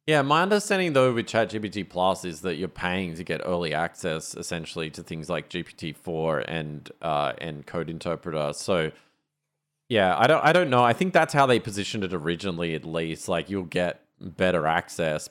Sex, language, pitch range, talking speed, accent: male, English, 95-115 Hz, 190 wpm, Australian